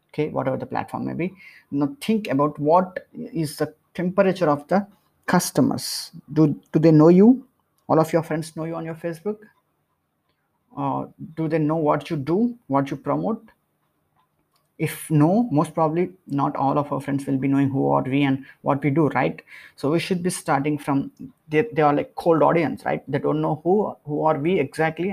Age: 20-39